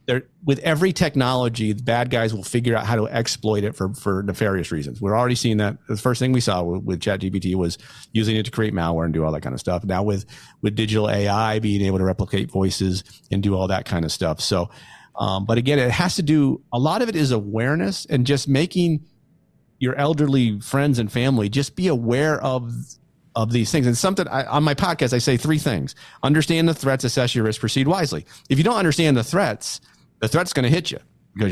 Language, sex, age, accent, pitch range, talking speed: English, male, 40-59, American, 105-135 Hz, 230 wpm